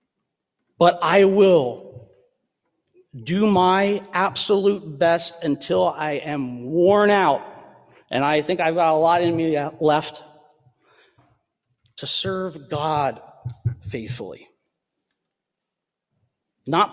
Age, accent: 40-59, American